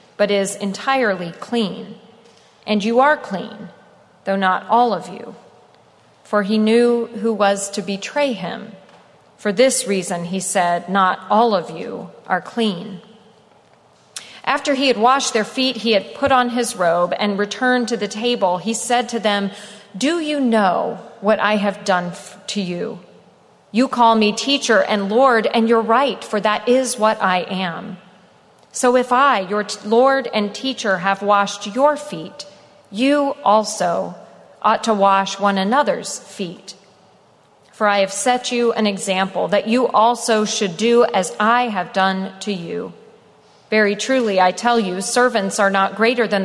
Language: English